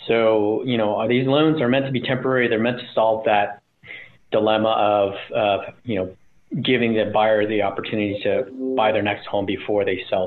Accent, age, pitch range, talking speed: American, 30-49, 105-125 Hz, 200 wpm